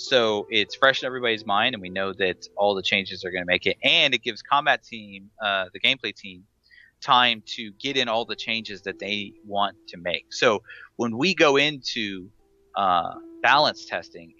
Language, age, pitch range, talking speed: English, 30-49, 95-140 Hz, 195 wpm